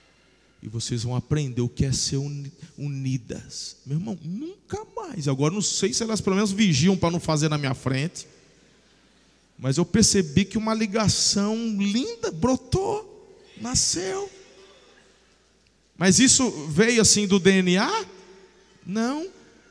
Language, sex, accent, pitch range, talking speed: Portuguese, male, Brazilian, 150-220 Hz, 130 wpm